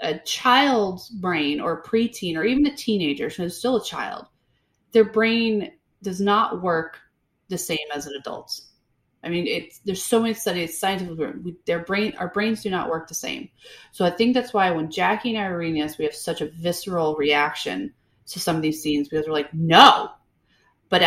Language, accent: English, American